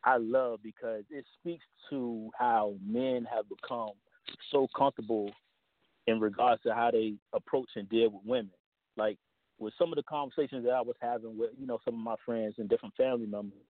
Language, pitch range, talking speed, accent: English, 120-160 Hz, 185 wpm, American